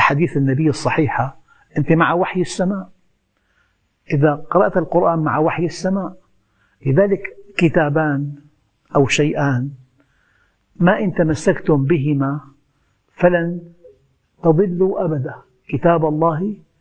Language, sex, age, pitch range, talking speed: Arabic, male, 60-79, 130-180 Hz, 95 wpm